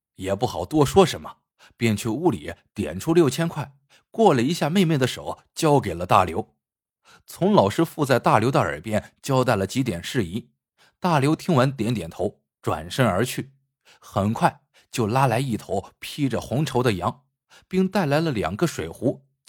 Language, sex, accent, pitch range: Chinese, male, native, 110-165 Hz